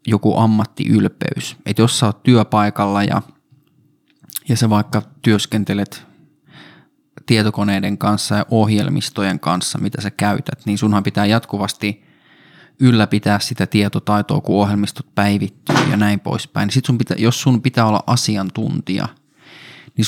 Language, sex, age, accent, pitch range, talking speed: Finnish, male, 20-39, native, 100-115 Hz, 125 wpm